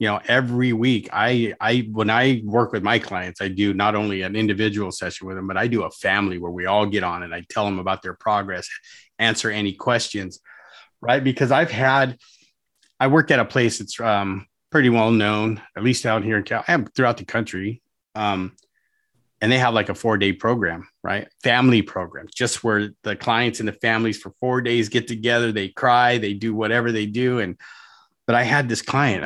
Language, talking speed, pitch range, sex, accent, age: English, 210 wpm, 100-120 Hz, male, American, 30-49